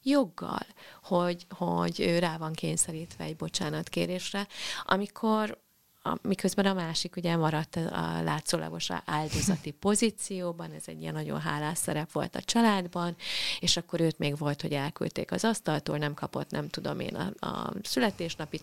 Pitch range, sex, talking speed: 150-180 Hz, female, 150 wpm